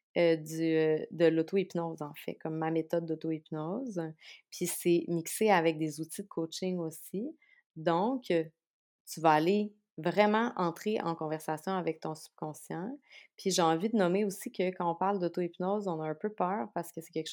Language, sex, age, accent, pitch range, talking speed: French, female, 30-49, Canadian, 160-195 Hz, 175 wpm